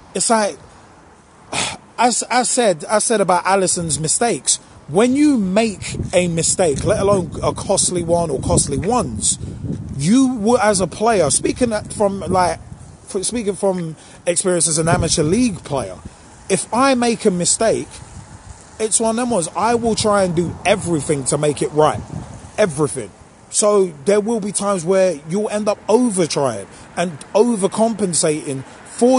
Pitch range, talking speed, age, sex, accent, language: 170-225 Hz, 150 wpm, 30-49, male, British, English